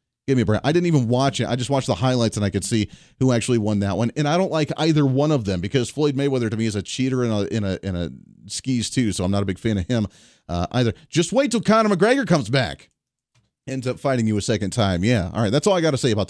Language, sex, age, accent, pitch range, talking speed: English, male, 30-49, American, 110-140 Hz, 295 wpm